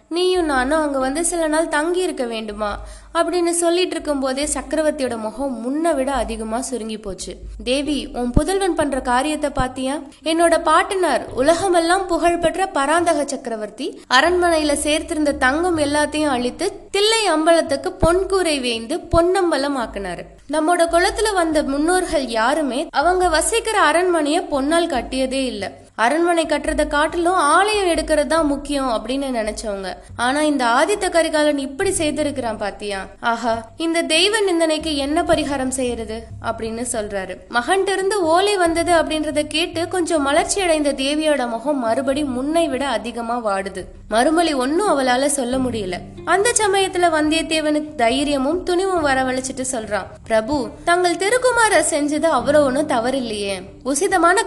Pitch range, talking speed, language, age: 255-340 Hz, 120 wpm, Tamil, 20-39